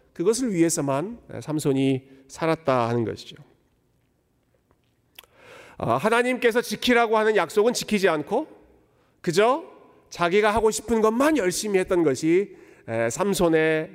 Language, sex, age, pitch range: Korean, male, 40-59, 150-240 Hz